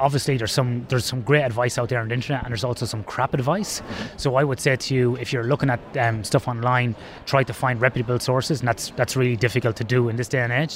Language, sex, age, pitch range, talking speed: English, male, 20-39, 120-140 Hz, 270 wpm